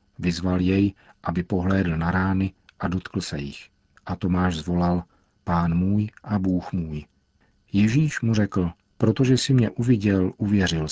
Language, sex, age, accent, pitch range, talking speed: Czech, male, 50-69, native, 90-105 Hz, 145 wpm